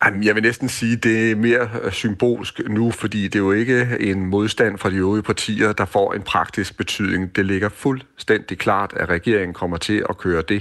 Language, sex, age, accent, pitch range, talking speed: Danish, male, 40-59, native, 90-110 Hz, 210 wpm